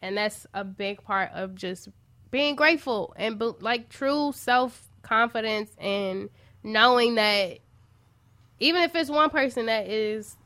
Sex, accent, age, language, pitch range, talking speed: female, American, 10-29, English, 195-245 Hz, 130 wpm